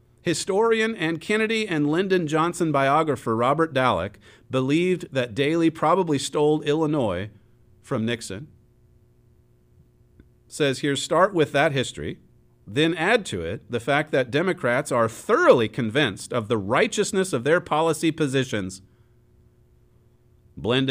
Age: 40-59